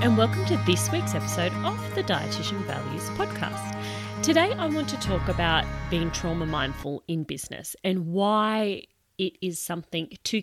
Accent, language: Australian, English